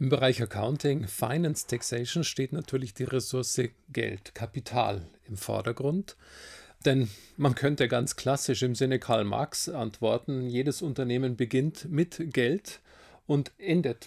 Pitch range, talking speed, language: 120-155 Hz, 130 wpm, German